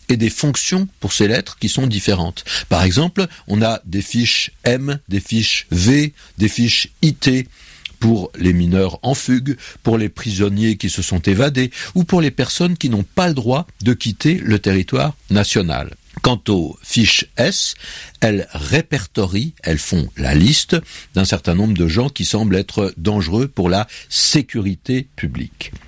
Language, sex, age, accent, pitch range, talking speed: French, male, 60-79, French, 90-130 Hz, 165 wpm